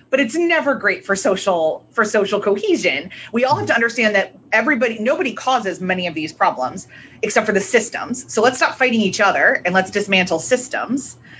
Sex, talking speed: female, 190 wpm